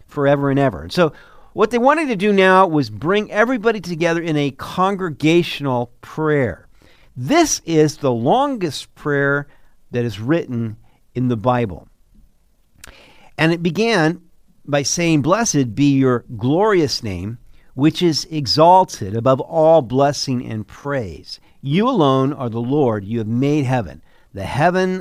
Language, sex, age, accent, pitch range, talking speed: English, male, 50-69, American, 130-175 Hz, 140 wpm